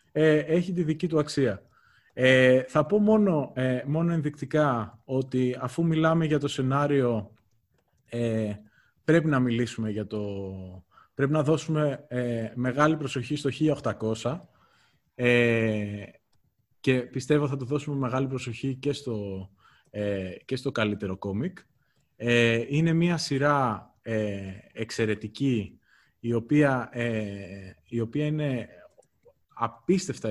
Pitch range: 105-140 Hz